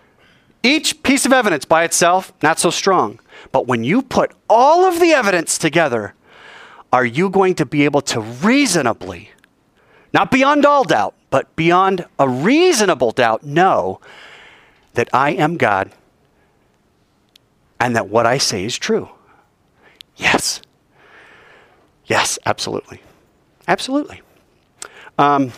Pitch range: 180-290 Hz